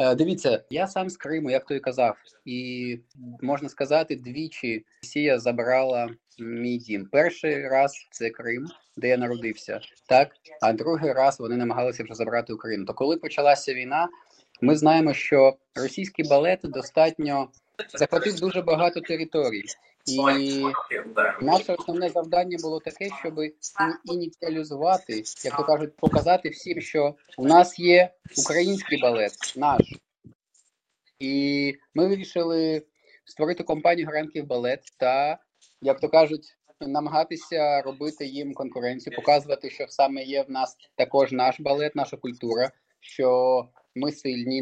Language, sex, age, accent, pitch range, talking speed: Ukrainian, male, 20-39, native, 130-160 Hz, 125 wpm